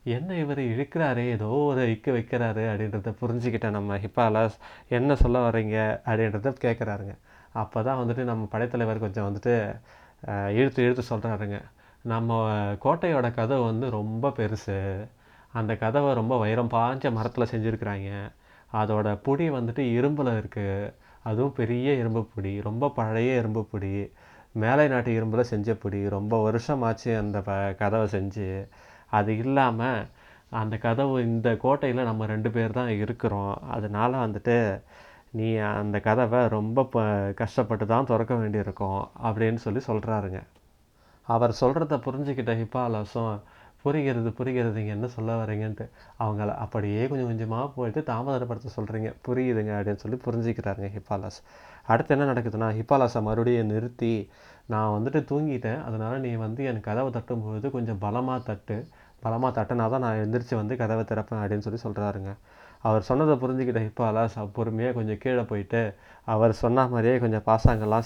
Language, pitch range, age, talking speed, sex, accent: Tamil, 105-125 Hz, 30-49, 130 wpm, male, native